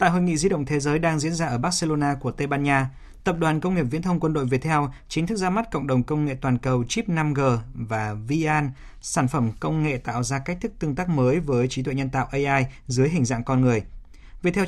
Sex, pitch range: male, 125-155 Hz